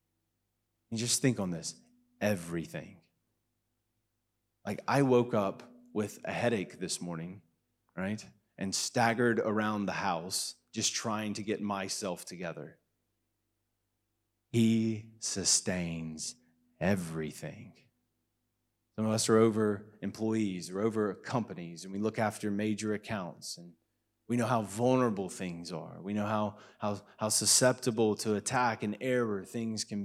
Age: 30-49